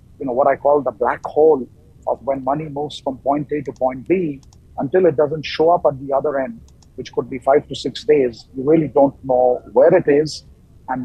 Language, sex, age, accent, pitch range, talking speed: English, male, 50-69, Indian, 125-160 Hz, 230 wpm